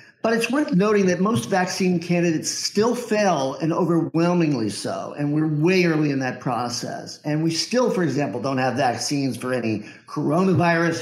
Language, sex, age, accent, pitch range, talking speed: English, male, 50-69, American, 140-185 Hz, 170 wpm